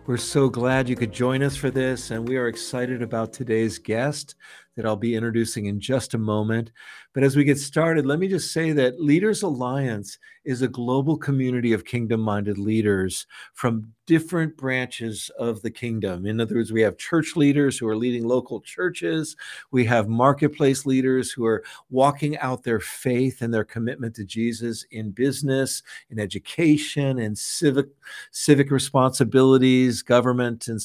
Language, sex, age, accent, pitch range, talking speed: English, male, 50-69, American, 115-145 Hz, 165 wpm